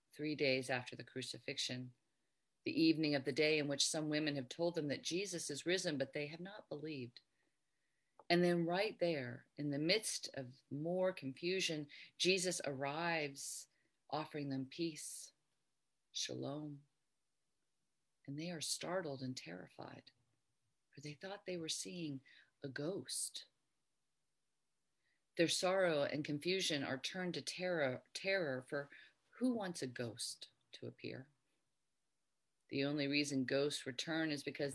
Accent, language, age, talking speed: American, English, 40-59, 135 wpm